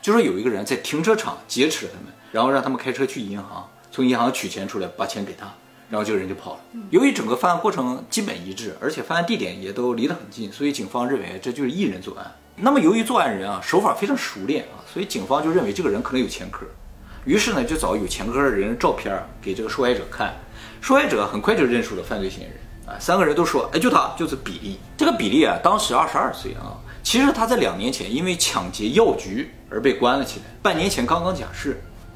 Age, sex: 20-39, male